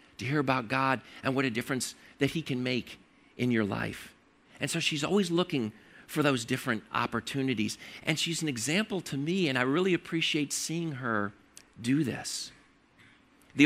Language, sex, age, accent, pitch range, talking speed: English, male, 50-69, American, 140-190 Hz, 170 wpm